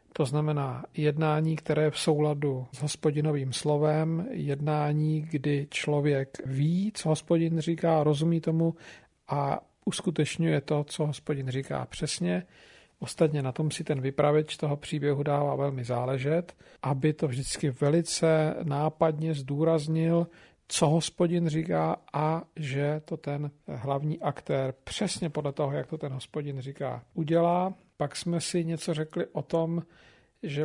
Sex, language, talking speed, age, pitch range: male, Slovak, 135 wpm, 50-69, 145-165 Hz